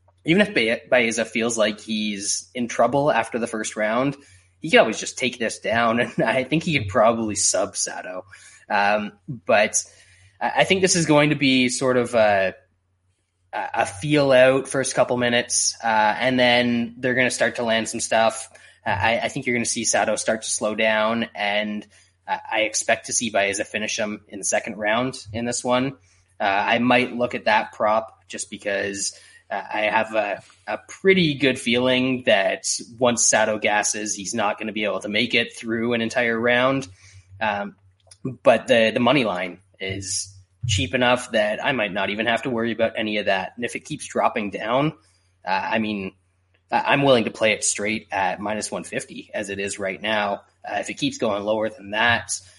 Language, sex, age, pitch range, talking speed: English, male, 20-39, 100-125 Hz, 195 wpm